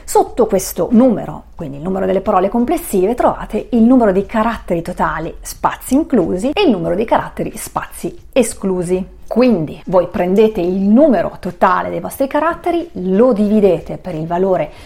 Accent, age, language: native, 30-49, Italian